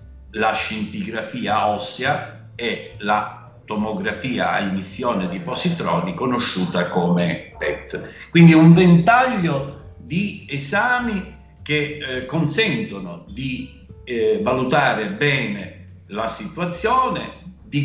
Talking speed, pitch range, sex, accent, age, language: 95 wpm, 105-165 Hz, male, native, 60-79, Italian